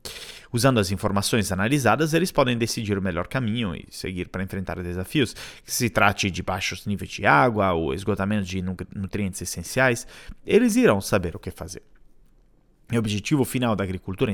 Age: 30-49